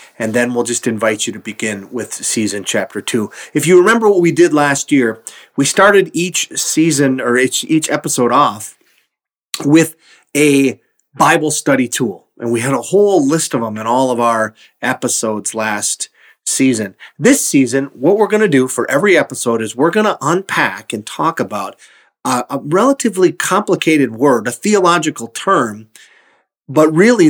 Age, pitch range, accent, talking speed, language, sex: 40-59, 115-155 Hz, American, 170 wpm, English, male